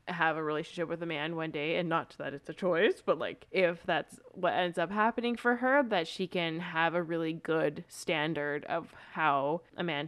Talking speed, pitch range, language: 215 wpm, 165-195 Hz, English